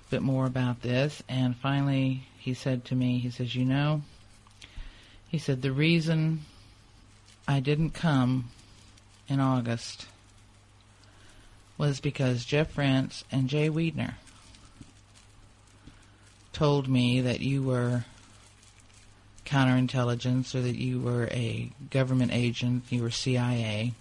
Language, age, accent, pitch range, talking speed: English, 50-69, American, 105-135 Hz, 115 wpm